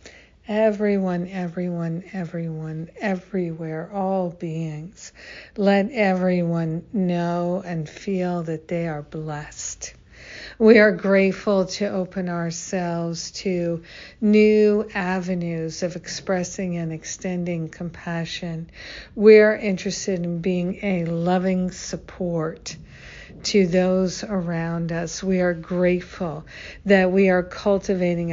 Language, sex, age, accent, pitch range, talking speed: English, female, 60-79, American, 170-195 Hz, 100 wpm